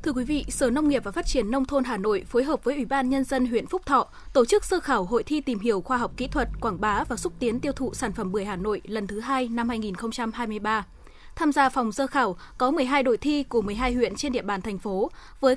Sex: female